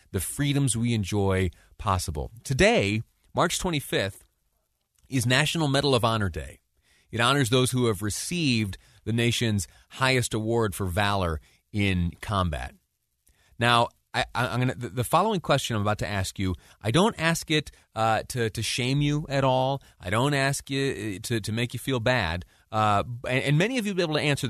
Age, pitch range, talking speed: 30-49, 95-135 Hz, 165 wpm